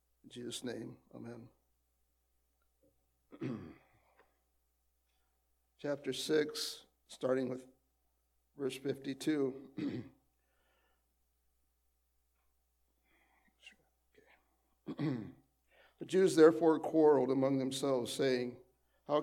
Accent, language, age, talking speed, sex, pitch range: American, English, 50-69, 55 wpm, male, 120-140 Hz